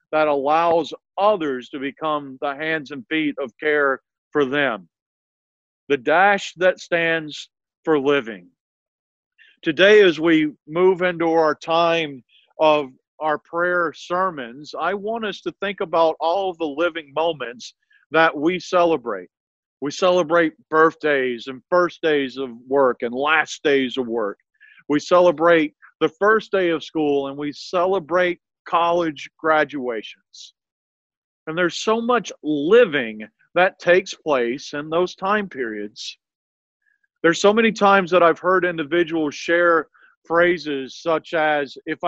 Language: English